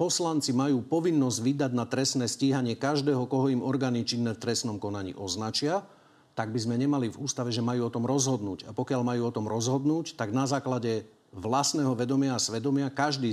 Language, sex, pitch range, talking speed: Slovak, male, 115-140 Hz, 185 wpm